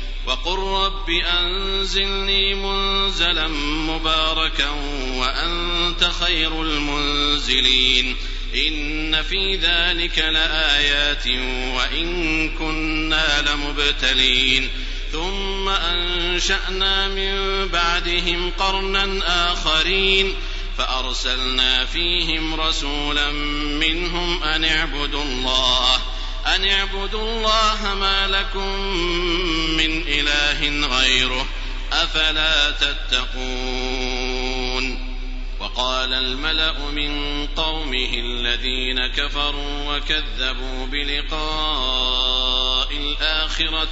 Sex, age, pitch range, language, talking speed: male, 50-69, 130-170 Hz, Arabic, 65 wpm